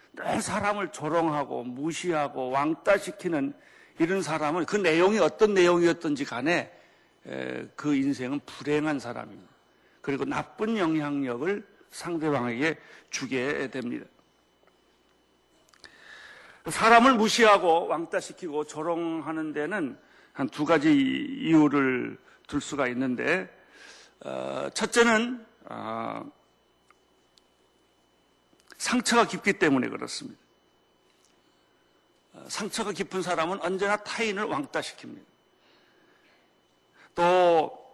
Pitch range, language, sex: 145-205 Hz, Korean, male